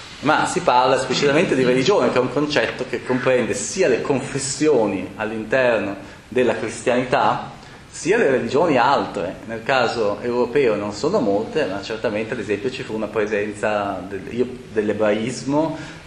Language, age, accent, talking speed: Italian, 30-49, native, 140 wpm